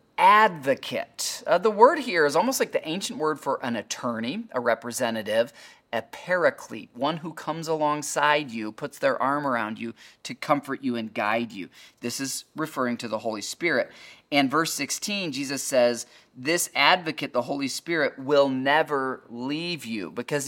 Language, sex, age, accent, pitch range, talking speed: English, male, 30-49, American, 130-165 Hz, 165 wpm